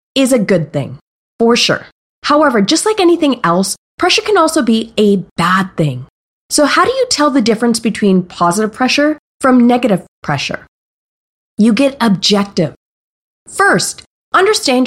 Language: English